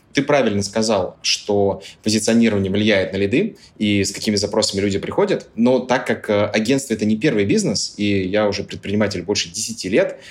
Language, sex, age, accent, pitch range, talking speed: Russian, male, 20-39, native, 95-115 Hz, 175 wpm